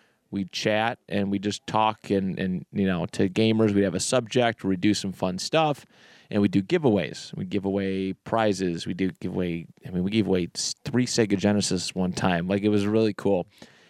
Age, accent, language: 30-49, American, English